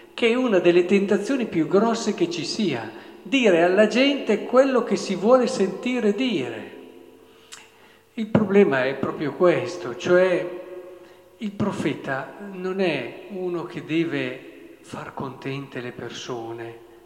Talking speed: 125 wpm